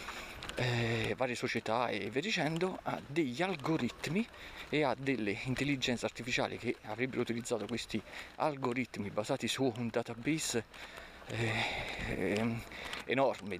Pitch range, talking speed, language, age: 115-170 Hz, 115 wpm, Italian, 40-59